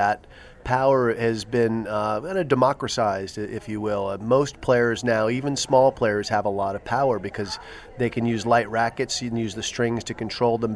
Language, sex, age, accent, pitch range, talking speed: English, male, 30-49, American, 105-120 Hz, 195 wpm